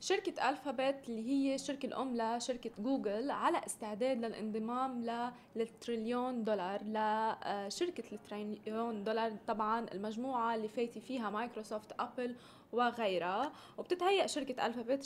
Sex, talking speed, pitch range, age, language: female, 115 wpm, 225-275 Hz, 20-39, Arabic